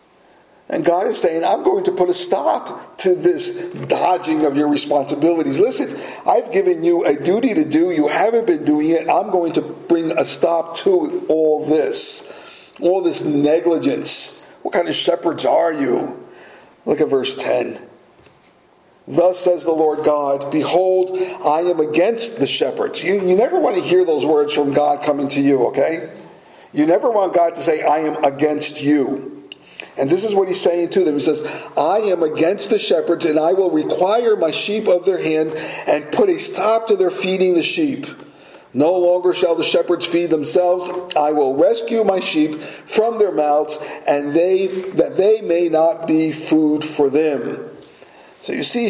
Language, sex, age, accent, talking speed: English, male, 50-69, American, 180 wpm